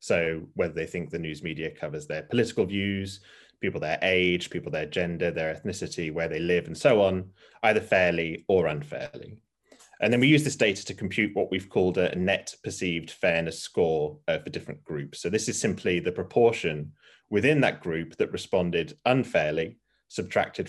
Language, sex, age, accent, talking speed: English, male, 30-49, British, 175 wpm